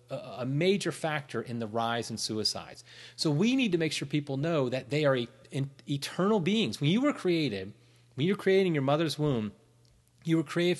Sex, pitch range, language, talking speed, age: male, 115-160 Hz, English, 210 wpm, 30-49